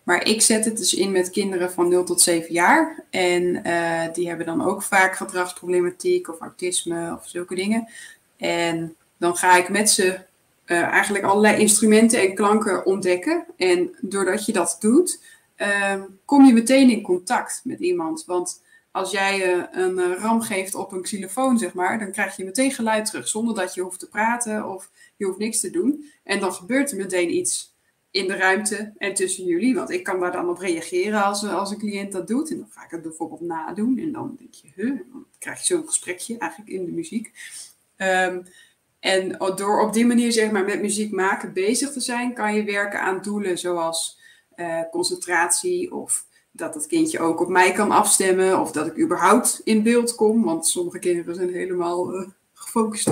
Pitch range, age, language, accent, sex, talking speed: 180-235 Hz, 20-39, Dutch, Dutch, female, 195 wpm